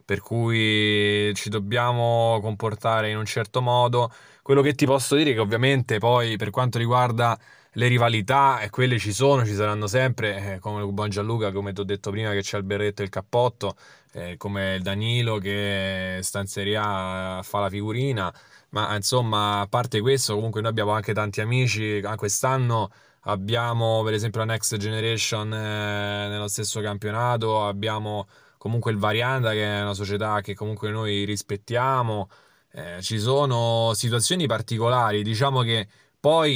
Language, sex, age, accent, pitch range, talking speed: Italian, male, 10-29, native, 105-120 Hz, 160 wpm